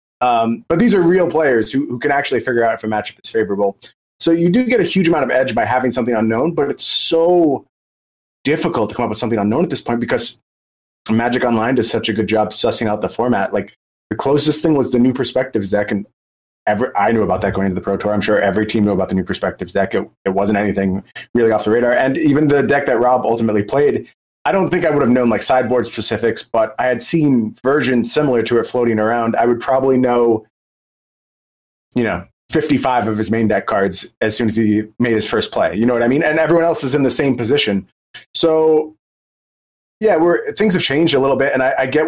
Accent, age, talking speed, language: American, 30-49, 240 wpm, English